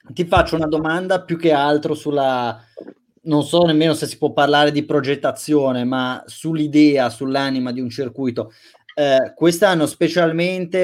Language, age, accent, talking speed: Italian, 30-49, native, 145 wpm